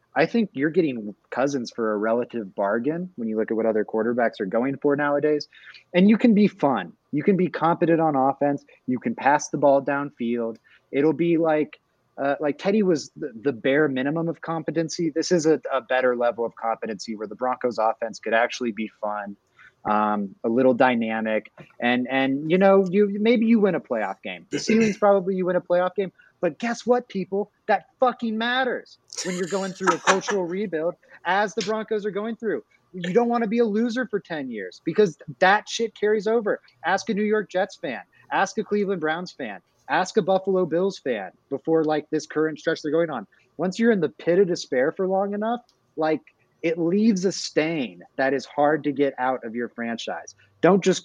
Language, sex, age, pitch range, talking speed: English, male, 30-49, 130-195 Hz, 205 wpm